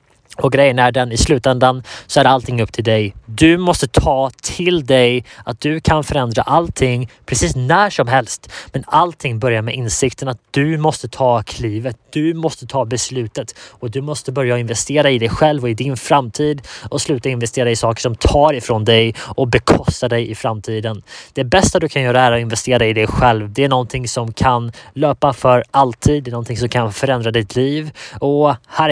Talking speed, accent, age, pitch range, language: 195 wpm, Norwegian, 20-39, 120-145 Hz, Swedish